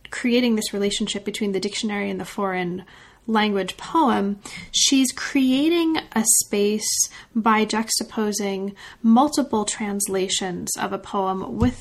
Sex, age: female, 30-49